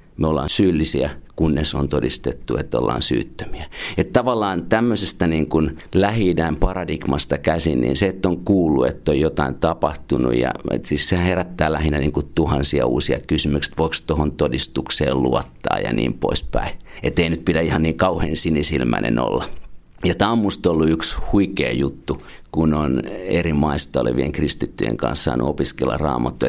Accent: native